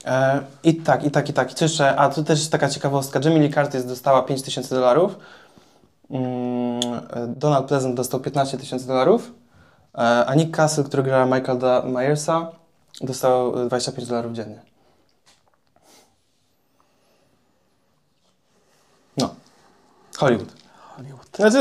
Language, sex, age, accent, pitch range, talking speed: Polish, male, 20-39, native, 125-145 Hz, 105 wpm